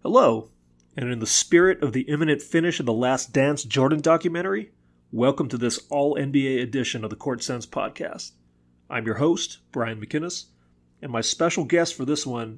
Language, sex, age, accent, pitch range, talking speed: English, male, 30-49, American, 105-140 Hz, 175 wpm